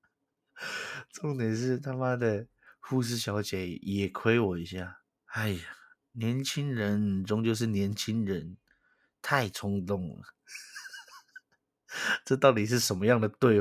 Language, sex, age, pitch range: Chinese, male, 20-39, 95-110 Hz